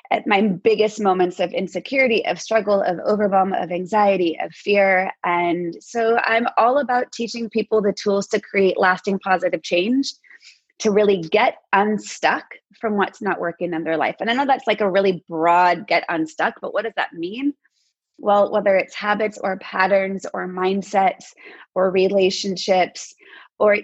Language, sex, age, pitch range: English, female, 20-39, 180-215 Hz